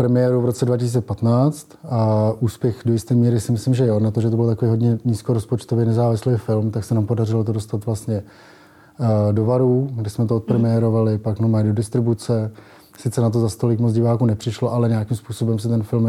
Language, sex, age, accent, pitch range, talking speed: Czech, male, 20-39, native, 110-120 Hz, 205 wpm